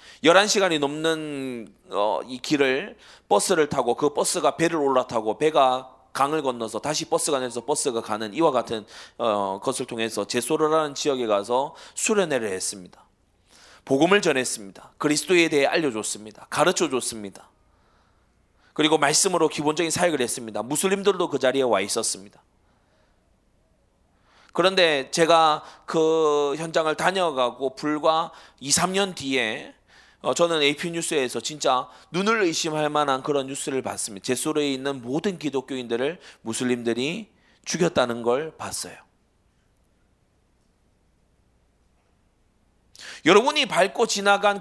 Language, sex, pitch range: Korean, male, 125-195 Hz